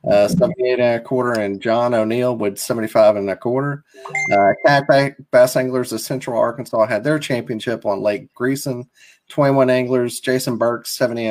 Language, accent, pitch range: English, American, 110-135 Hz